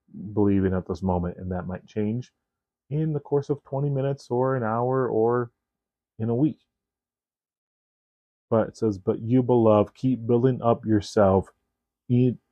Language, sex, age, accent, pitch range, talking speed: English, male, 30-49, American, 100-120 Hz, 155 wpm